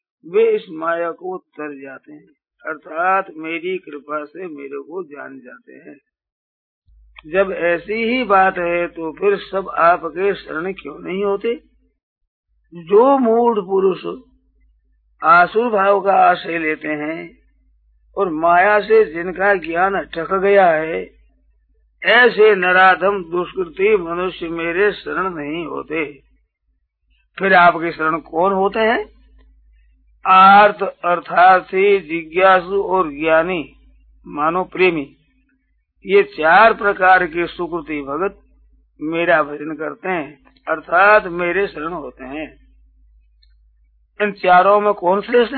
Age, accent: 50-69, native